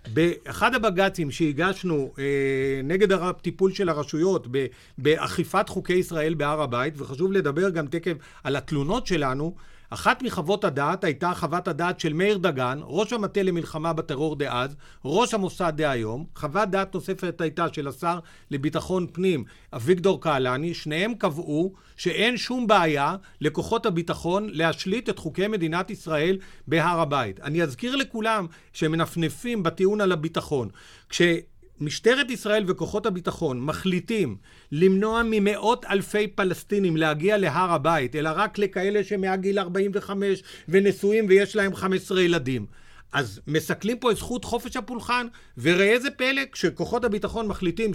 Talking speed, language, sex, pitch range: 135 wpm, Hebrew, male, 160-205 Hz